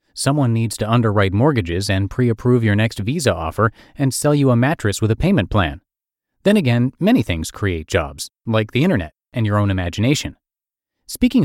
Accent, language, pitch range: American, English, 100-135 Hz